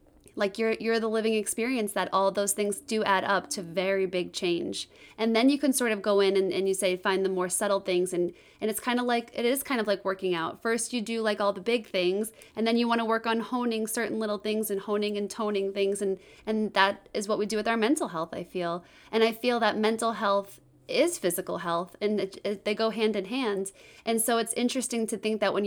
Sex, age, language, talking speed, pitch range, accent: female, 20-39, English, 255 wpm, 190-220 Hz, American